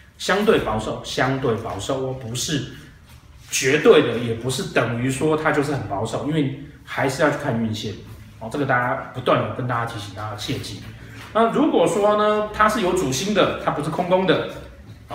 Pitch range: 115-155 Hz